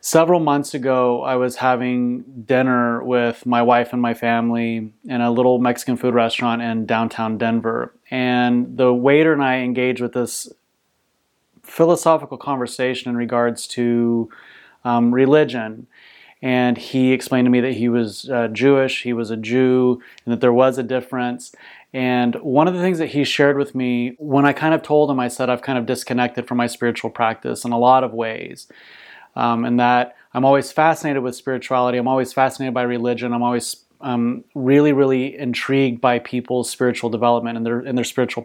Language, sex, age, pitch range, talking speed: English, male, 30-49, 120-135 Hz, 185 wpm